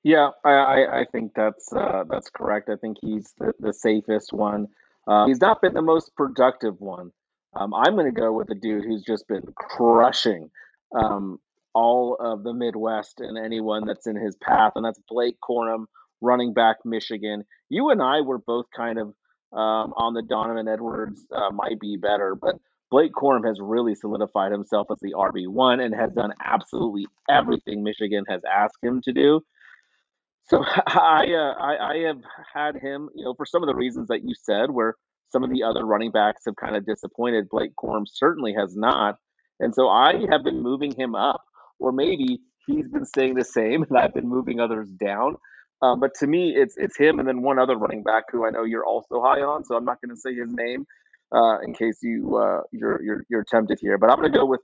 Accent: American